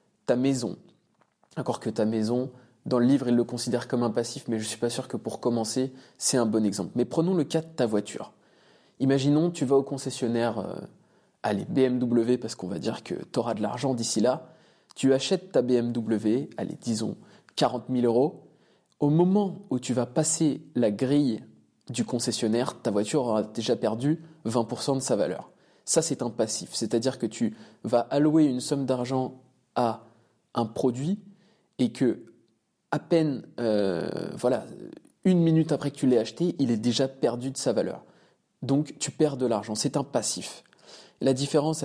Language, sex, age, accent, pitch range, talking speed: French, male, 20-39, French, 120-150 Hz, 180 wpm